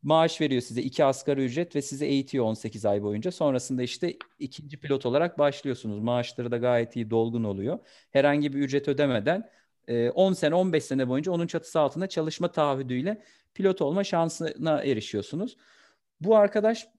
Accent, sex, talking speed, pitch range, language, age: native, male, 155 wpm, 120-180 Hz, Turkish, 40-59